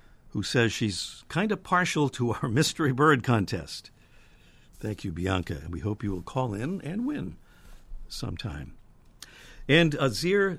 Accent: American